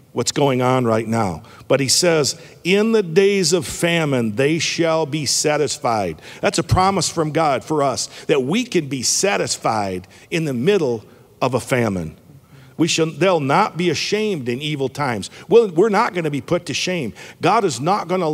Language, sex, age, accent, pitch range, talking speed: English, male, 50-69, American, 125-165 Hz, 185 wpm